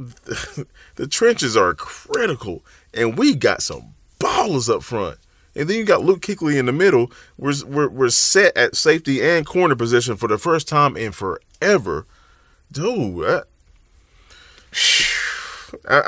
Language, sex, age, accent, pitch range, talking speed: English, male, 30-49, American, 85-130 Hz, 140 wpm